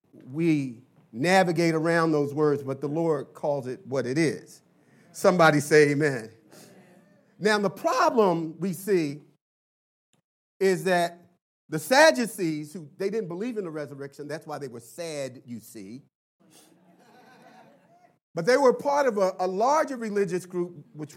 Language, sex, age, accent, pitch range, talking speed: English, male, 40-59, American, 150-200 Hz, 140 wpm